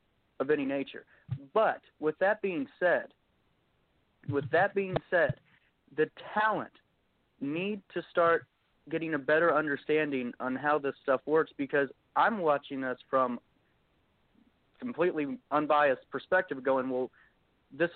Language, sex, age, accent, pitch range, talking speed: English, male, 30-49, American, 130-160 Hz, 125 wpm